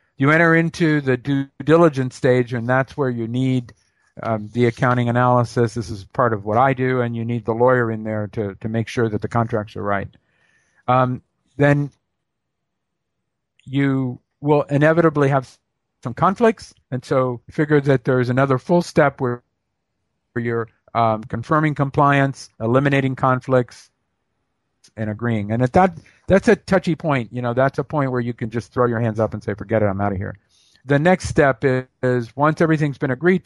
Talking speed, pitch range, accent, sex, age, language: 185 wpm, 115-140 Hz, American, male, 50-69, English